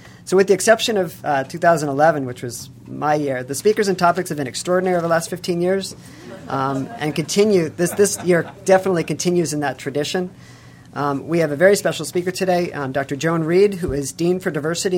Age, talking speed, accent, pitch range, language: 40-59, 205 wpm, American, 145-180 Hz, English